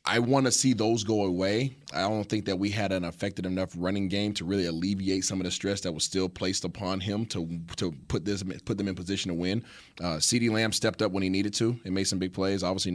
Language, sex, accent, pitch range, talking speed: English, male, American, 90-110 Hz, 260 wpm